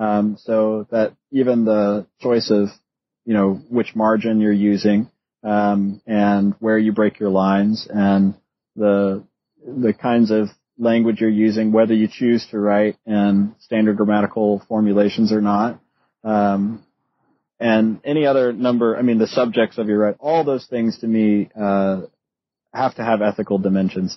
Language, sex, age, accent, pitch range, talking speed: English, male, 30-49, American, 105-120 Hz, 155 wpm